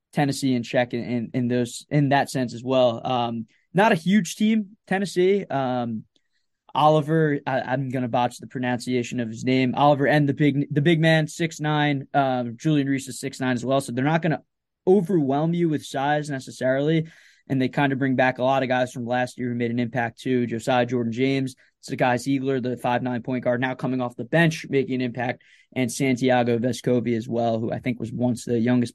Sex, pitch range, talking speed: male, 125-145 Hz, 210 wpm